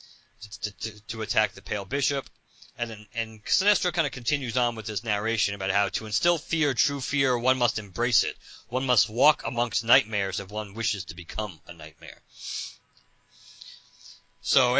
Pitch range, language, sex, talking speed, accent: 105-140 Hz, English, male, 170 wpm, American